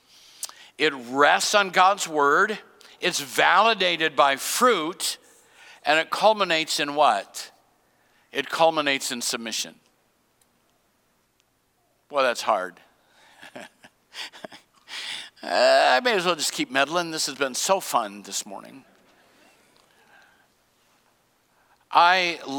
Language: English